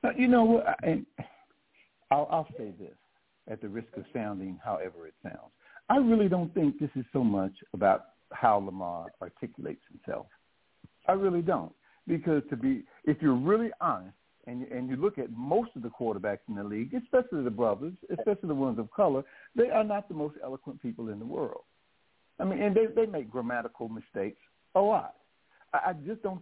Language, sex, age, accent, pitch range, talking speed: English, male, 60-79, American, 115-185 Hz, 190 wpm